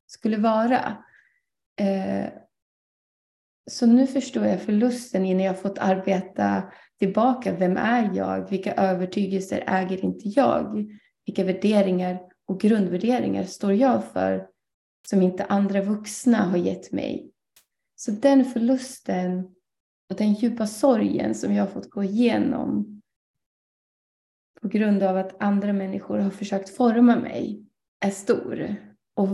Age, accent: 30-49, native